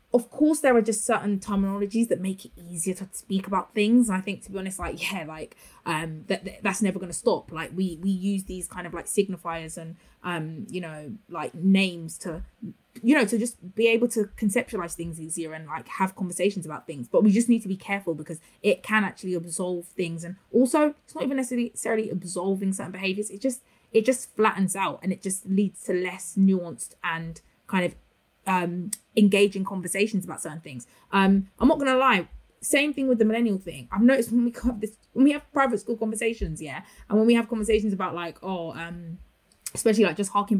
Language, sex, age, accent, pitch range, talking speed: English, female, 20-39, British, 180-225 Hz, 210 wpm